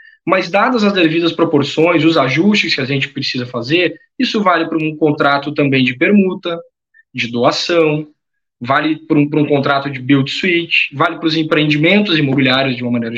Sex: male